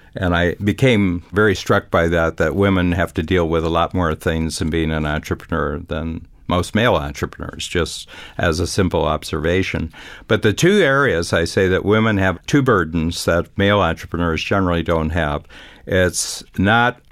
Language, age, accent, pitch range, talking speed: English, 60-79, American, 80-95 Hz, 170 wpm